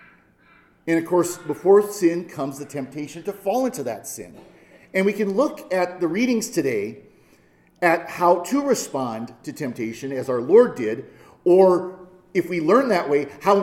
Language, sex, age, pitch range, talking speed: English, male, 40-59, 150-220 Hz, 165 wpm